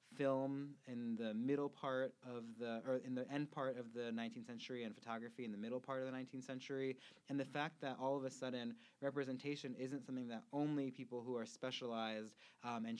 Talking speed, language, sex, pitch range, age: 210 wpm, English, male, 115-135 Hz, 20-39